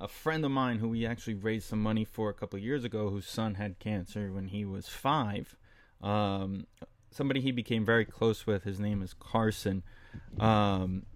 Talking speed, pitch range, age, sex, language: 195 wpm, 100-115 Hz, 20-39, male, English